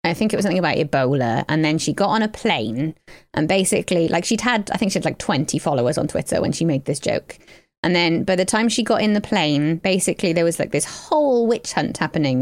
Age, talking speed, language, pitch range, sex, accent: 20-39, 250 wpm, English, 165-215 Hz, female, British